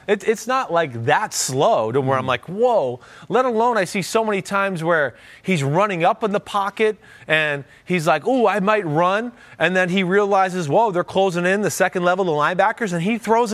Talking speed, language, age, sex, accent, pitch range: 215 wpm, English, 30-49, male, American, 145-210 Hz